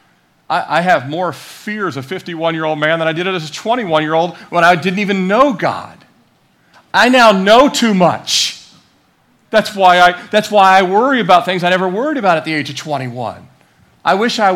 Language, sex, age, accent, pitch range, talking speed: English, male, 40-59, American, 135-185 Hz, 190 wpm